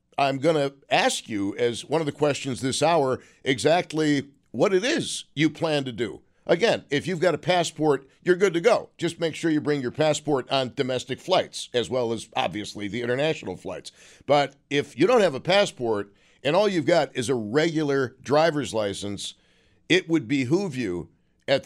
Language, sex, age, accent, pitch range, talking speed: English, male, 50-69, American, 125-160 Hz, 190 wpm